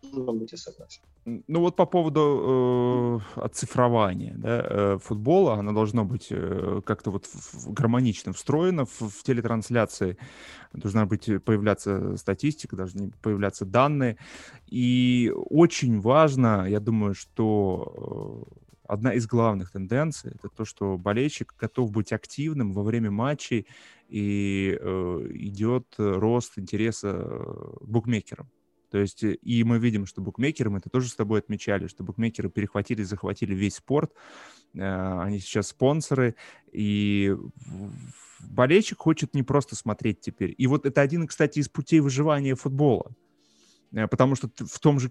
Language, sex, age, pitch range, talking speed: Russian, male, 20-39, 100-130 Hz, 135 wpm